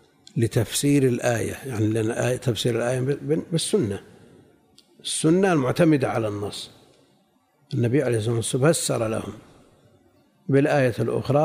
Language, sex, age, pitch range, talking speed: Arabic, male, 50-69, 125-165 Hz, 95 wpm